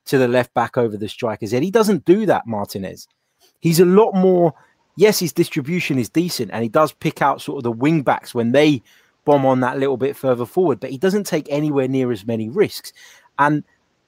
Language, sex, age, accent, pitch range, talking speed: English, male, 30-49, British, 120-155 Hz, 215 wpm